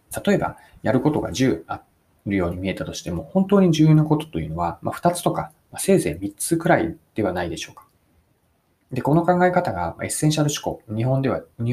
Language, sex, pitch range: Japanese, male, 100-155 Hz